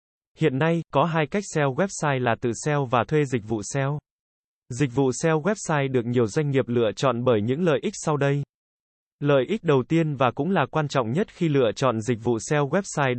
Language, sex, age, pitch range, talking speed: Vietnamese, male, 20-39, 120-160 Hz, 220 wpm